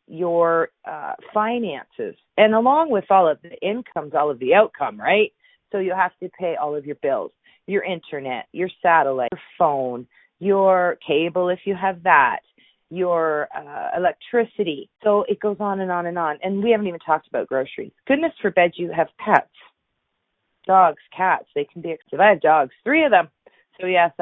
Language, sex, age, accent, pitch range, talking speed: English, female, 40-59, American, 160-210 Hz, 180 wpm